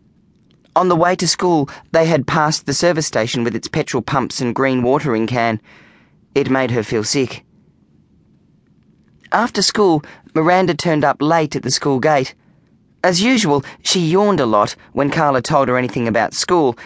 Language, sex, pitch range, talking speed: English, male, 120-170 Hz, 165 wpm